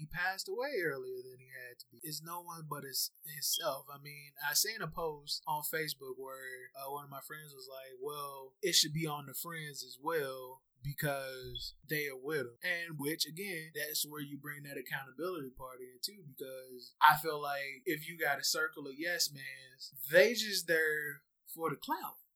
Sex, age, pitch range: male, 20-39, 135-170 Hz